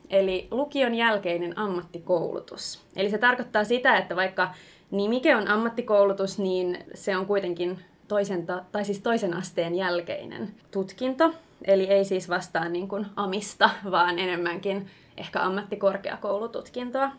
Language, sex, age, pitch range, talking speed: Finnish, female, 20-39, 185-240 Hz, 120 wpm